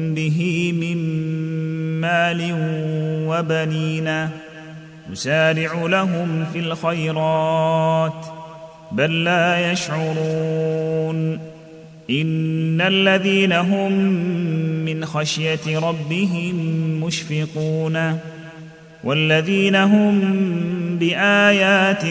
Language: Arabic